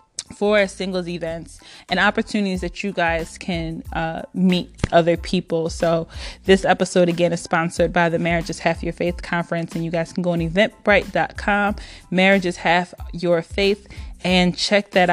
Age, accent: 20-39, American